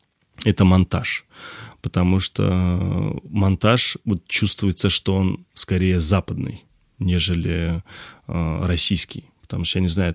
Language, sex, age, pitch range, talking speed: Russian, male, 30-49, 90-105 Hz, 110 wpm